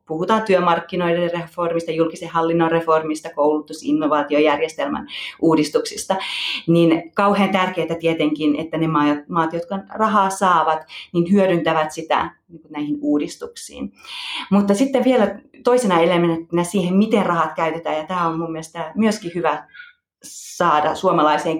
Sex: female